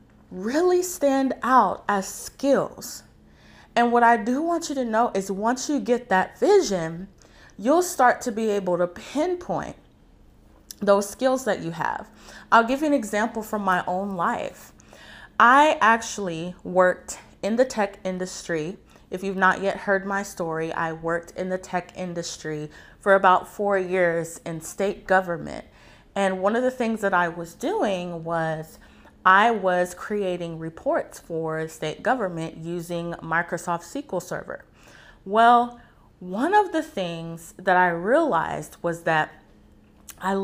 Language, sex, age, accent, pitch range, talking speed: English, female, 20-39, American, 170-230 Hz, 145 wpm